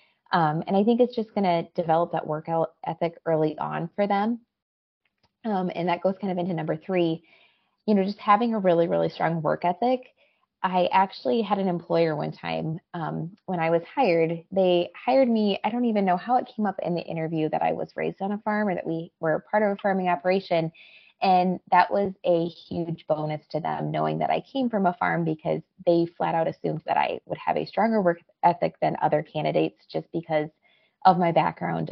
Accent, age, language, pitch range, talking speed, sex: American, 20-39, English, 165-205 Hz, 210 wpm, female